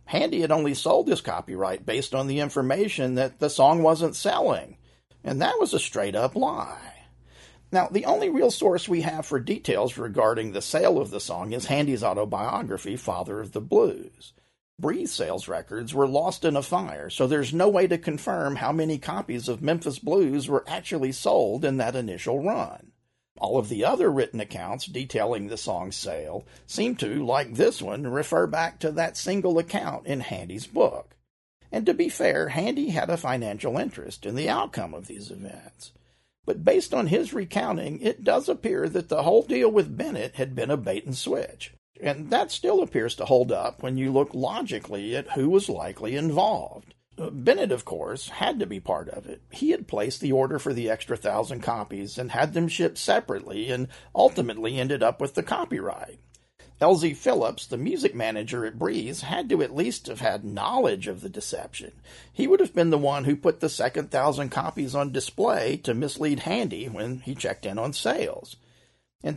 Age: 40-59